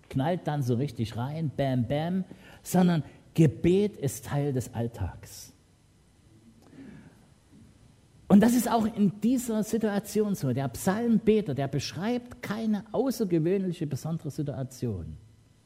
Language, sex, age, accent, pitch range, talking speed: English, male, 50-69, German, 120-165 Hz, 110 wpm